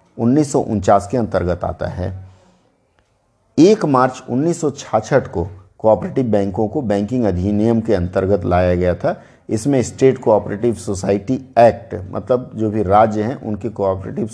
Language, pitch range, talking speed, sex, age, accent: Hindi, 100-130 Hz, 130 wpm, male, 50-69, native